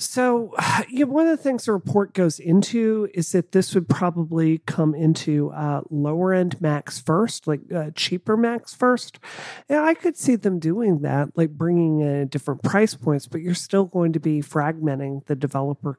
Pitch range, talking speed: 155-200 Hz, 190 wpm